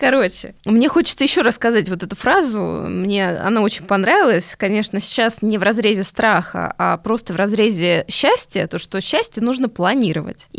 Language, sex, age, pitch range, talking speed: Russian, female, 20-39, 195-255 Hz, 160 wpm